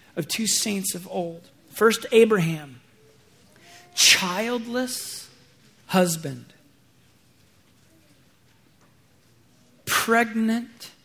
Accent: American